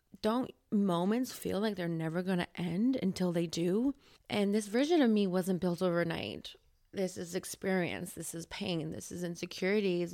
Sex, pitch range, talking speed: female, 175-225 Hz, 170 wpm